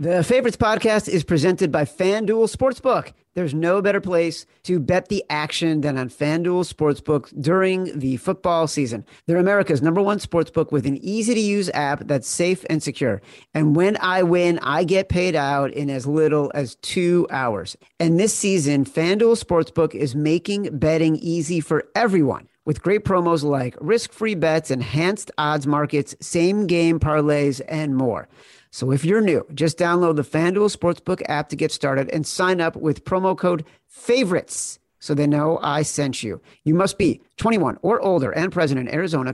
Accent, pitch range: American, 145-180 Hz